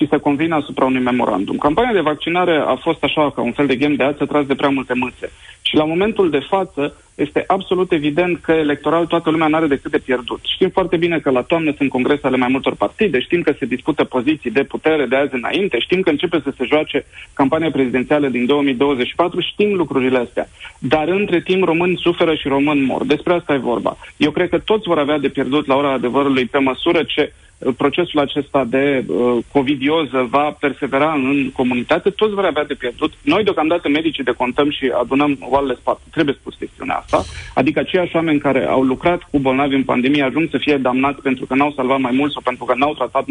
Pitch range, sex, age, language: 135-170 Hz, male, 40-59, Romanian